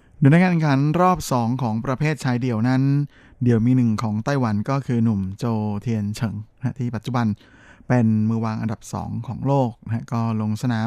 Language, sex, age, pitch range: Thai, male, 20-39, 110-130 Hz